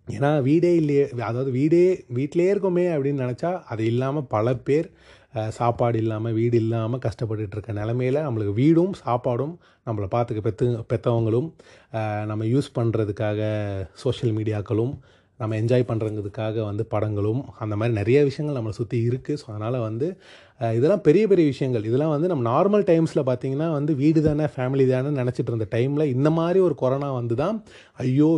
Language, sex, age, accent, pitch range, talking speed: Tamil, male, 30-49, native, 115-145 Hz, 150 wpm